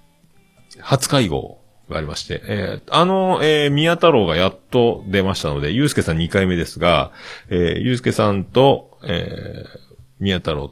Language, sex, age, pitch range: Japanese, male, 40-59, 80-115 Hz